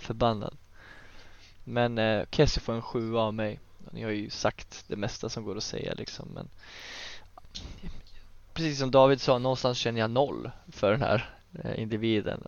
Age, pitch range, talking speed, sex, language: 20-39, 105-125 Hz, 170 wpm, male, Swedish